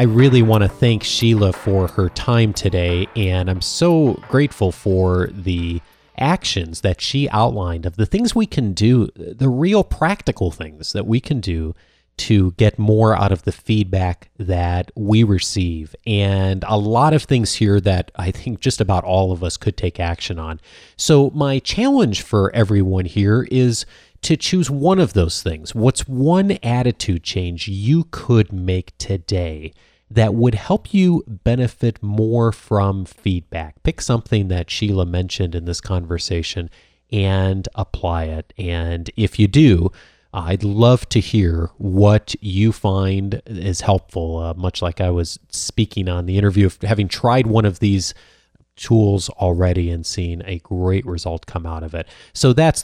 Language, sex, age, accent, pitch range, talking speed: English, male, 30-49, American, 90-115 Hz, 160 wpm